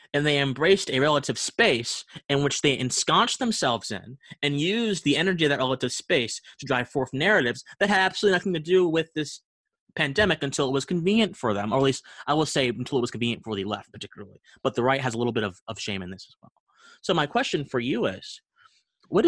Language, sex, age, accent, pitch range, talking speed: English, male, 30-49, American, 110-145 Hz, 230 wpm